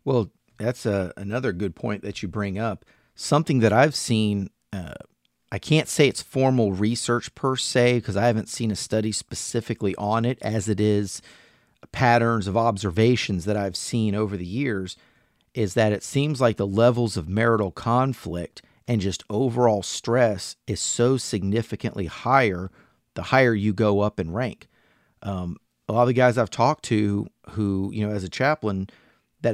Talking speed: 170 wpm